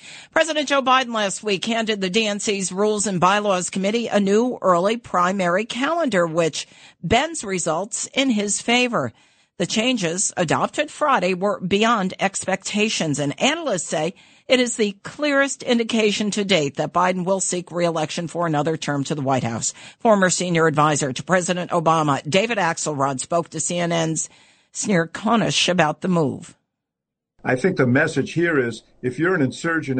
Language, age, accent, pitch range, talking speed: English, 50-69, American, 125-195 Hz, 155 wpm